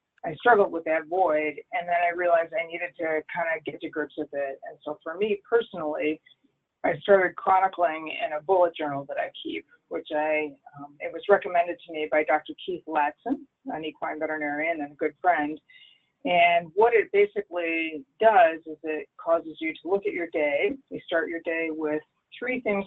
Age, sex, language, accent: 30-49, female, English, American